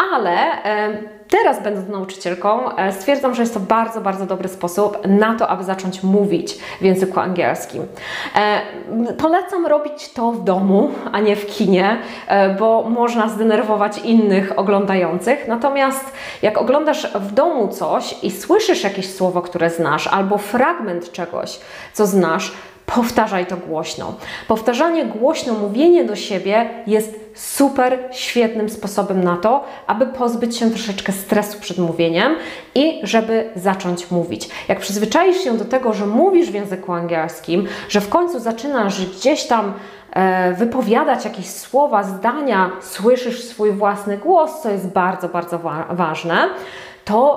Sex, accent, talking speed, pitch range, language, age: female, native, 135 wpm, 190-240 Hz, Polish, 20-39